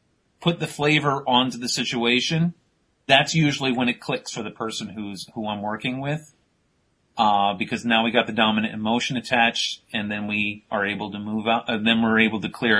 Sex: male